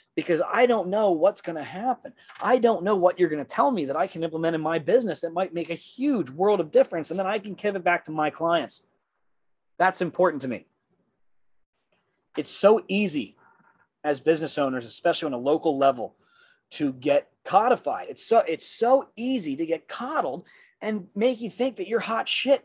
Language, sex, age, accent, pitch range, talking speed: English, male, 30-49, American, 175-255 Hz, 200 wpm